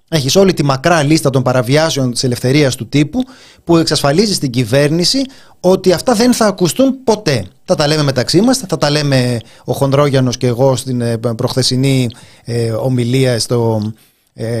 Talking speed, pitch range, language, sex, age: 160 wpm, 120-165 Hz, Greek, male, 30-49